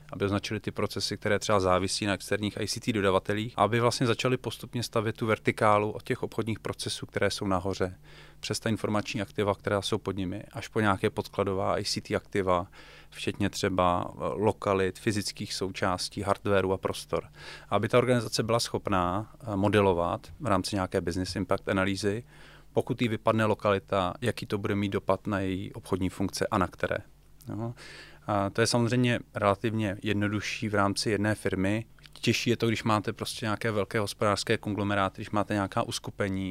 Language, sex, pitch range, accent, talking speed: Czech, male, 95-110 Hz, native, 165 wpm